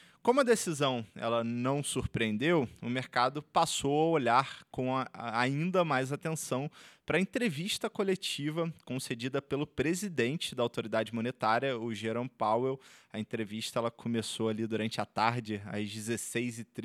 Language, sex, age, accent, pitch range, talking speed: Portuguese, male, 20-39, Brazilian, 115-165 Hz, 130 wpm